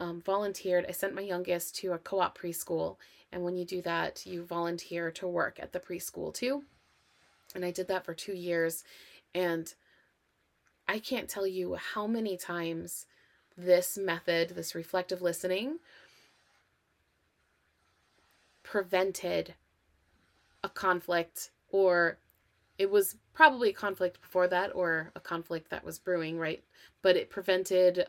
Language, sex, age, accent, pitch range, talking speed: English, female, 20-39, American, 165-185 Hz, 135 wpm